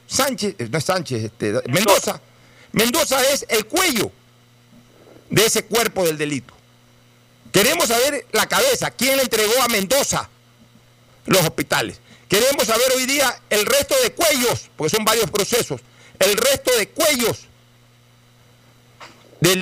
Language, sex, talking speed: Spanish, male, 130 wpm